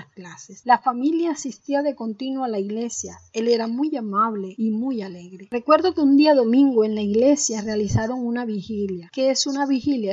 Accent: American